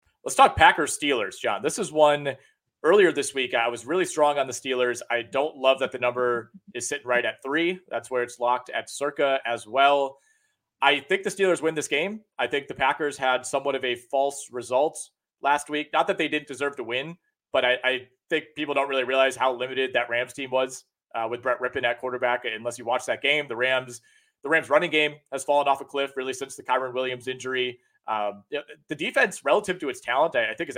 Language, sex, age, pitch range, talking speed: English, male, 30-49, 125-145 Hz, 230 wpm